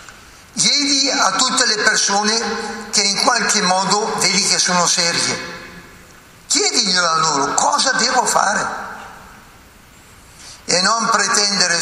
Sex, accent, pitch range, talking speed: male, native, 165-225 Hz, 110 wpm